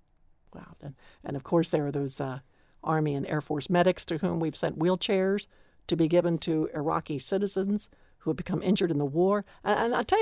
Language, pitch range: English, 175-240 Hz